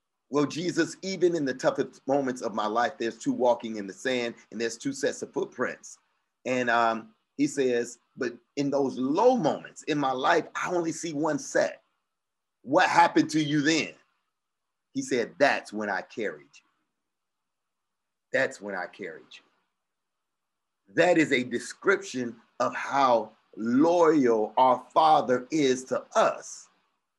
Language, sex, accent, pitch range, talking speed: English, male, American, 115-155 Hz, 150 wpm